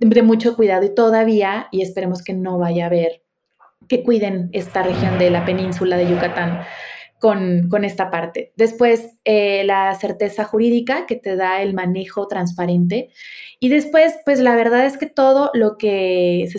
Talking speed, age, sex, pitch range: 170 wpm, 20-39, female, 185-225 Hz